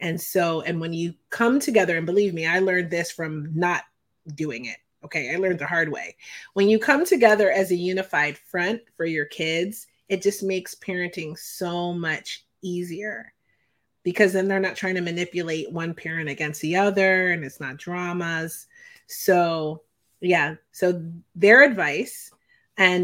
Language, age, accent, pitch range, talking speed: English, 30-49, American, 165-195 Hz, 165 wpm